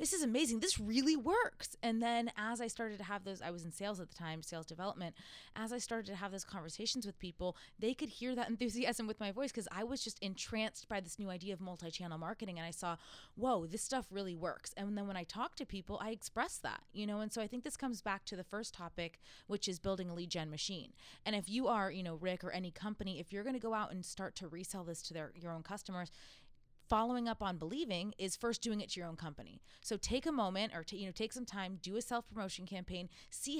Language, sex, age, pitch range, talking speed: English, female, 20-39, 180-225 Hz, 255 wpm